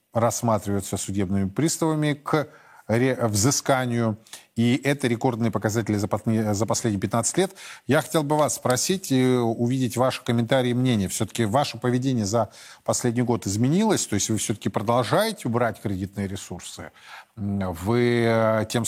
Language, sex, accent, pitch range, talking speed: Russian, male, native, 110-130 Hz, 130 wpm